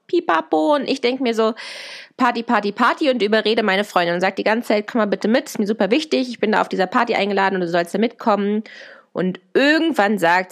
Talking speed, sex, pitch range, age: 235 wpm, female, 190-255 Hz, 20-39